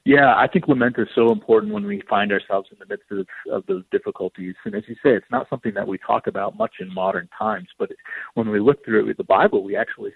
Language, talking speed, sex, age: English, 260 wpm, male, 40-59